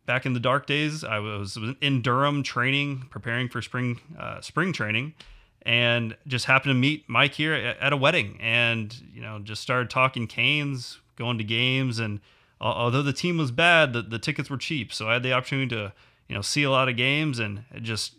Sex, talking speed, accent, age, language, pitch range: male, 205 wpm, American, 30-49, English, 110-135 Hz